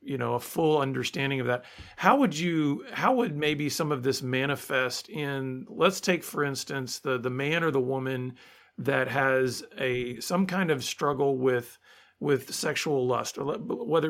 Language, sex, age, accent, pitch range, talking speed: English, male, 40-59, American, 130-160 Hz, 170 wpm